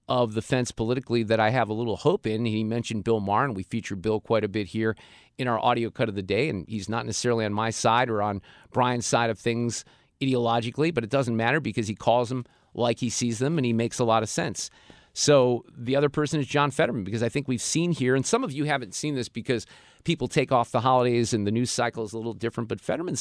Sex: male